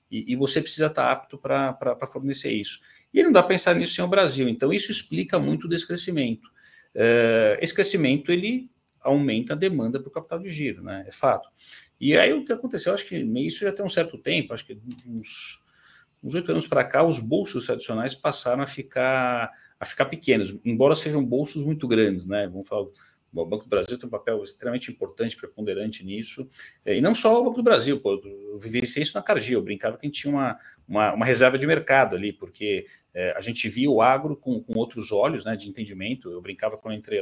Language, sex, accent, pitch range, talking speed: Portuguese, male, Brazilian, 110-175 Hz, 215 wpm